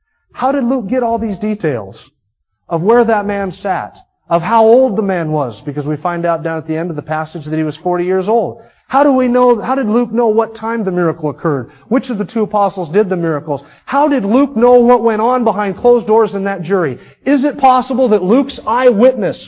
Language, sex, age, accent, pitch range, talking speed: English, male, 30-49, American, 145-215 Hz, 230 wpm